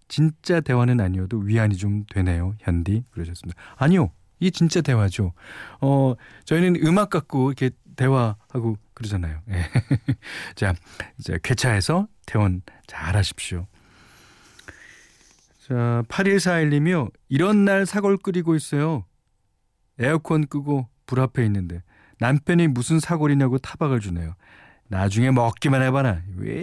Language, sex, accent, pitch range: Korean, male, native, 105-155 Hz